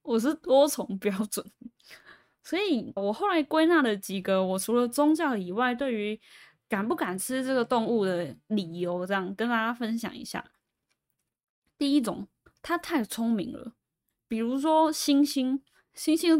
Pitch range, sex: 190-250 Hz, female